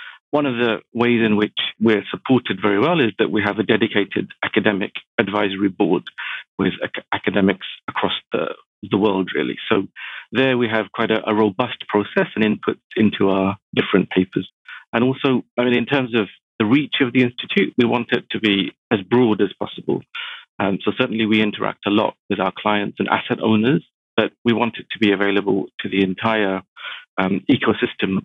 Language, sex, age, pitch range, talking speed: English, male, 50-69, 100-115 Hz, 185 wpm